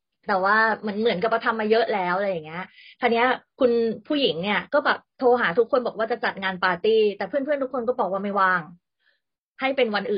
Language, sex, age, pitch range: Thai, female, 20-39, 185-235 Hz